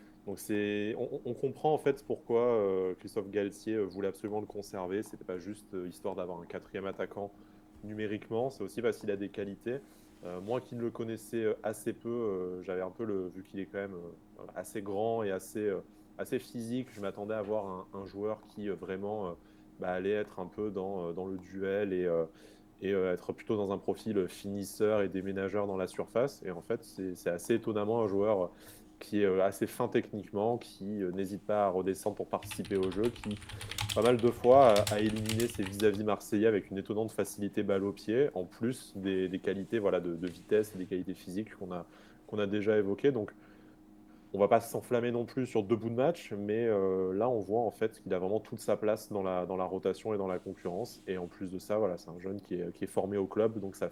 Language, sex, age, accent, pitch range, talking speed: French, male, 20-39, French, 95-110 Hz, 230 wpm